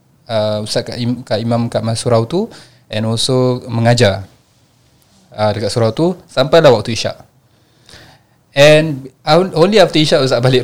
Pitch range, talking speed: 110-140 Hz, 135 wpm